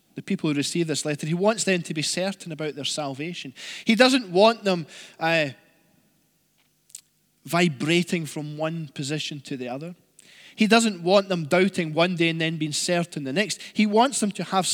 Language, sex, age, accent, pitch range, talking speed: English, male, 20-39, British, 155-200 Hz, 185 wpm